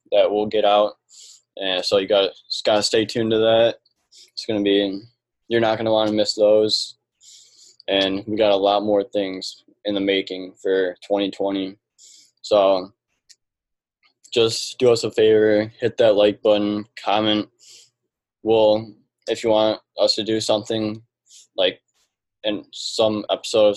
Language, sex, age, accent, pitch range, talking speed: English, male, 10-29, American, 100-110 Hz, 145 wpm